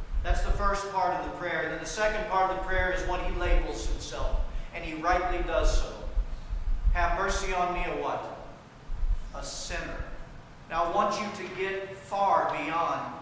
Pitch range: 160-195 Hz